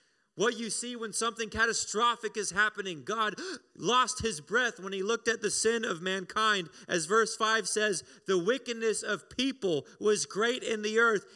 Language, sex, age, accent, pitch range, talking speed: English, male, 30-49, American, 210-240 Hz, 175 wpm